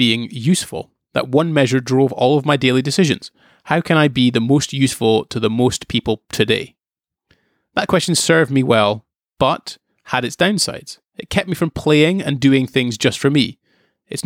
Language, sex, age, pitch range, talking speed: English, male, 30-49, 120-160 Hz, 185 wpm